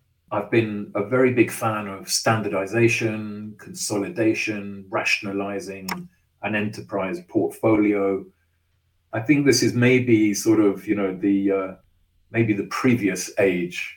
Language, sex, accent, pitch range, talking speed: English, male, British, 95-115 Hz, 120 wpm